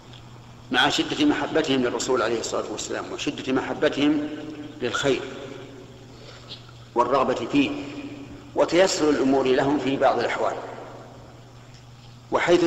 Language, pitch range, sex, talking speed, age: Arabic, 120-145 Hz, male, 90 wpm, 50-69